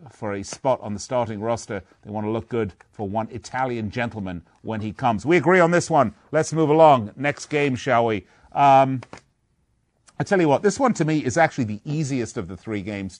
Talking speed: 220 wpm